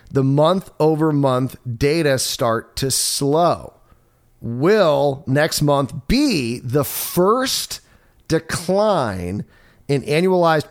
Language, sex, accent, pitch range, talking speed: English, male, American, 120-165 Hz, 85 wpm